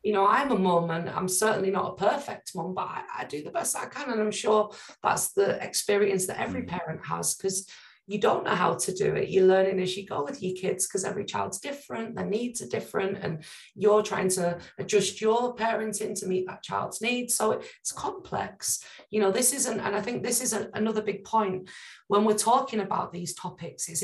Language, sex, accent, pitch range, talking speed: English, female, British, 185-220 Hz, 225 wpm